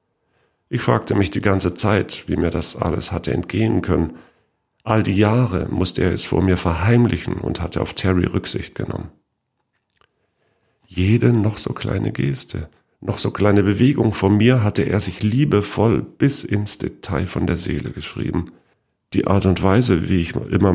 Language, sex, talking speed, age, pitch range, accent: German, male, 165 wpm, 50-69, 90-115 Hz, German